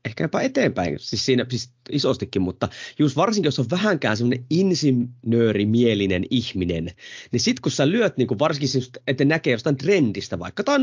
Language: Finnish